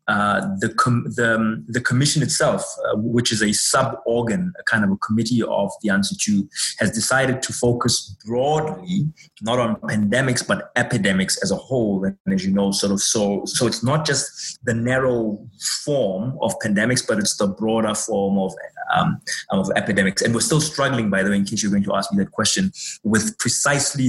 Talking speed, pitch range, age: 190 wpm, 105-140 Hz, 30-49